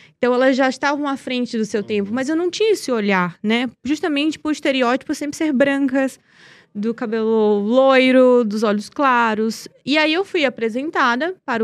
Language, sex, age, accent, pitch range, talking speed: Portuguese, female, 20-39, Brazilian, 220-285 Hz, 180 wpm